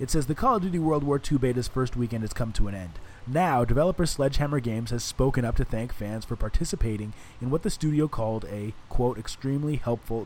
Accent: American